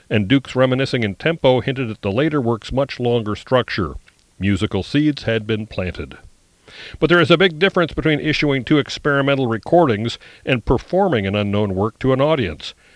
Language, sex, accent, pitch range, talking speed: English, male, American, 105-130 Hz, 170 wpm